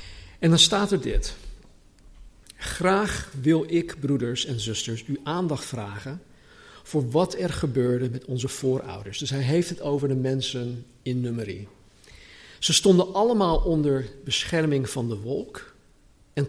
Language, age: Dutch, 50-69